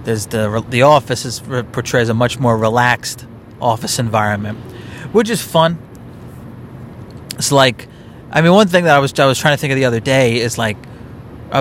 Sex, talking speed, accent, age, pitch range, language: male, 185 wpm, American, 30-49, 115-150 Hz, English